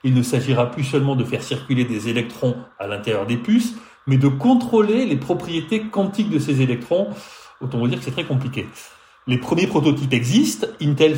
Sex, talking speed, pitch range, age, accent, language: male, 190 wpm, 130-205 Hz, 30-49, French, French